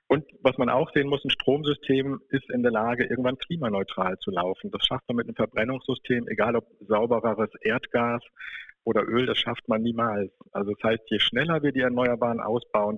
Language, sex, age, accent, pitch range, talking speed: German, male, 50-69, German, 110-125 Hz, 190 wpm